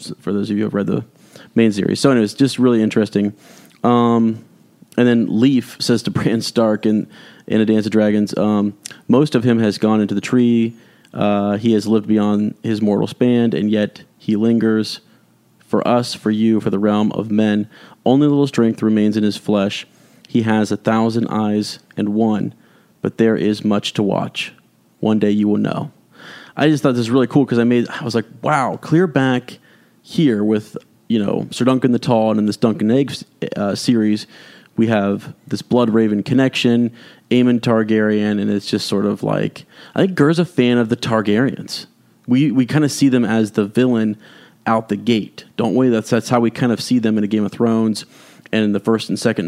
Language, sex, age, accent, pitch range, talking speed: English, male, 30-49, American, 105-120 Hz, 205 wpm